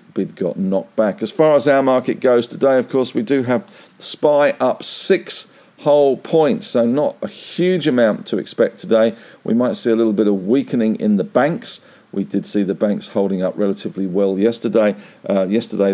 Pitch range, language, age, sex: 100-120 Hz, English, 50-69, male